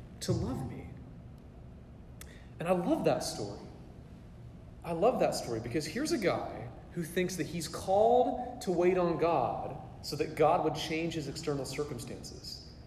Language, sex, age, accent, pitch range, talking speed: English, male, 30-49, American, 115-160 Hz, 155 wpm